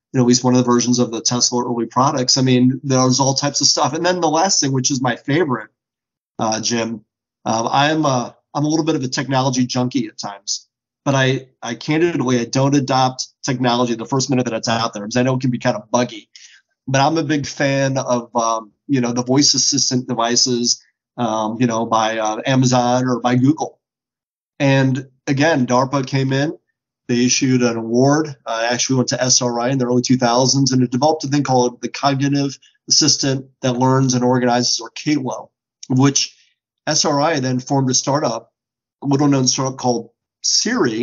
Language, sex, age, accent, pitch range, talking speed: English, male, 30-49, American, 125-140 Hz, 195 wpm